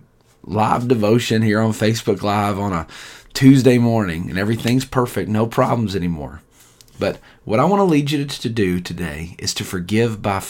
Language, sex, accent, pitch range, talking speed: English, male, American, 100-130 Hz, 170 wpm